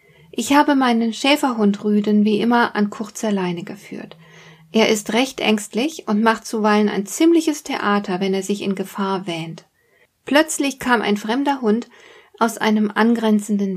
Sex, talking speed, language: female, 155 wpm, German